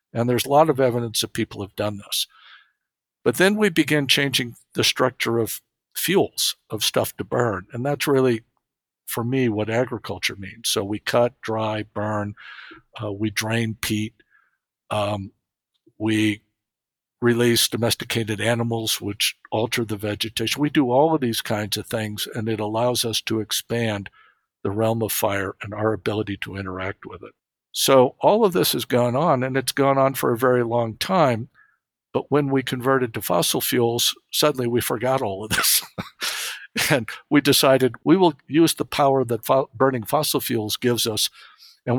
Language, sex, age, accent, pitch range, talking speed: English, male, 60-79, American, 110-130 Hz, 170 wpm